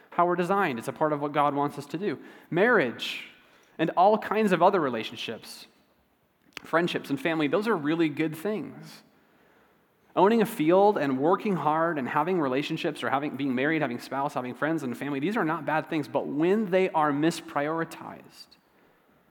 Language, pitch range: English, 120-160 Hz